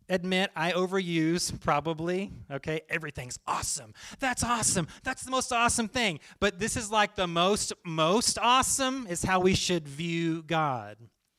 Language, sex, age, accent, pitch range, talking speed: English, male, 30-49, American, 160-225 Hz, 150 wpm